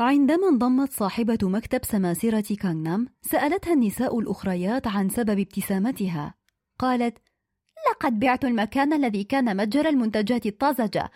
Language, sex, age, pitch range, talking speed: Arabic, female, 20-39, 210-295 Hz, 115 wpm